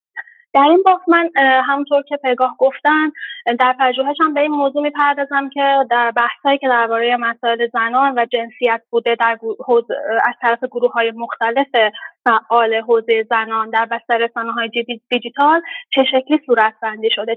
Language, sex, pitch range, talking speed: Persian, female, 235-270 Hz, 140 wpm